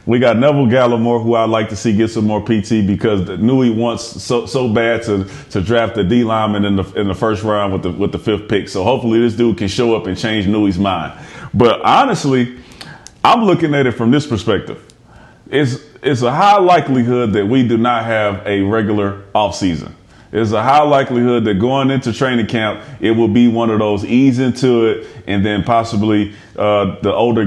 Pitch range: 105-130 Hz